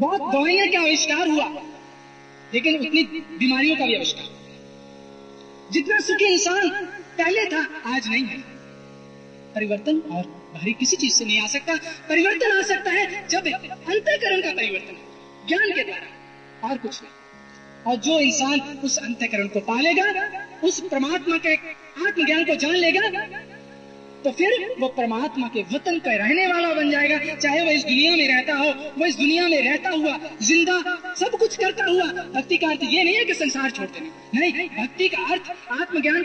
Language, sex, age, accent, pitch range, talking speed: Hindi, female, 30-49, native, 235-355 Hz, 135 wpm